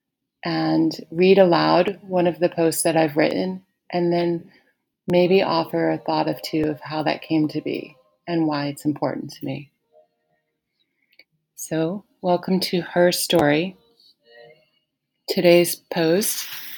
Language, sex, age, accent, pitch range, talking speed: English, female, 30-49, American, 160-185 Hz, 130 wpm